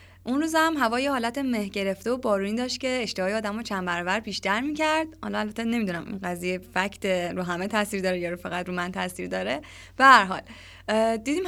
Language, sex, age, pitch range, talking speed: Persian, female, 20-39, 190-265 Hz, 200 wpm